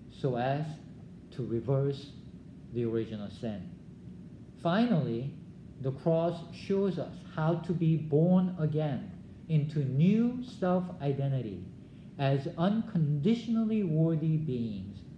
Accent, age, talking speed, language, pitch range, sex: Japanese, 50-69, 100 wpm, English, 135-185 Hz, male